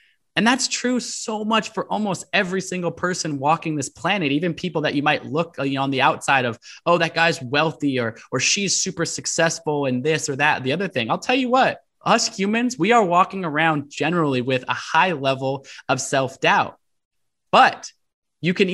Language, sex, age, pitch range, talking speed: English, male, 20-39, 135-190 Hz, 195 wpm